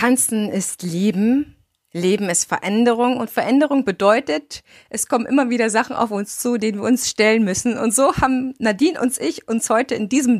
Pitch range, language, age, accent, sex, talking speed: 210-265 Hz, German, 30-49, German, female, 185 wpm